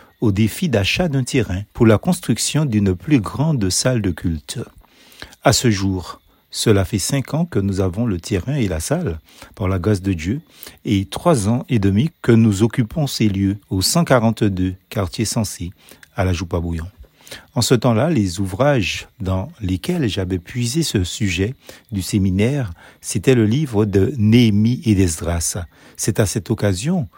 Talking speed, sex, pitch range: 165 wpm, male, 95-130 Hz